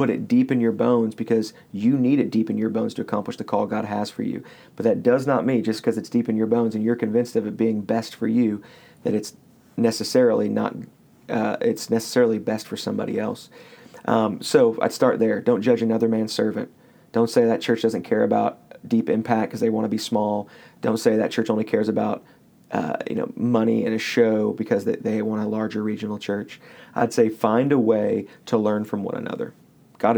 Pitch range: 110-125 Hz